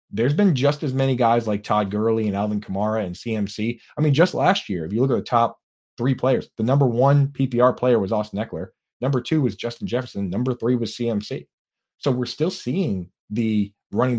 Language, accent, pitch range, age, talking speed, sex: English, American, 105-130 Hz, 30-49, 210 wpm, male